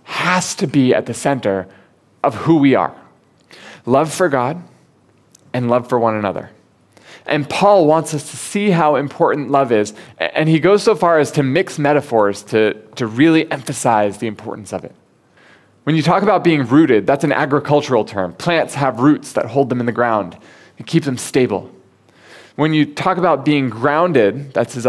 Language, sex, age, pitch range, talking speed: English, male, 20-39, 120-155 Hz, 185 wpm